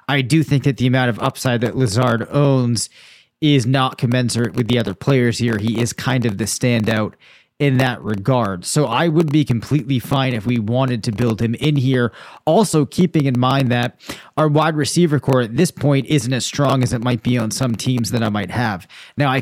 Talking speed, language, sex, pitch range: 215 wpm, English, male, 115-140 Hz